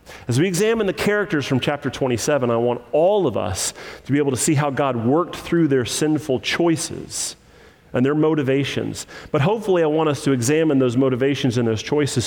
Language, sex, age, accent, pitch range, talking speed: English, male, 40-59, American, 120-160 Hz, 195 wpm